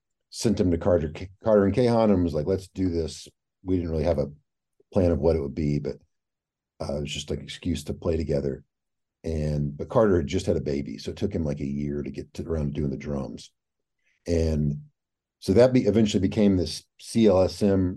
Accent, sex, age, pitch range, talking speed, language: American, male, 50-69, 75-95 Hz, 215 wpm, English